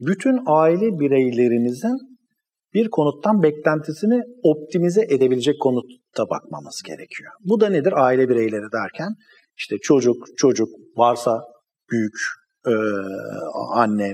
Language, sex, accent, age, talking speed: Turkish, male, native, 50-69, 100 wpm